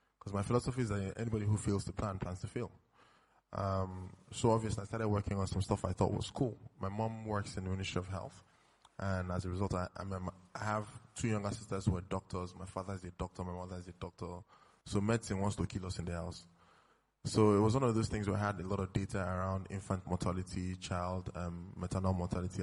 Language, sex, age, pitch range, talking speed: English, male, 20-39, 90-110 Hz, 230 wpm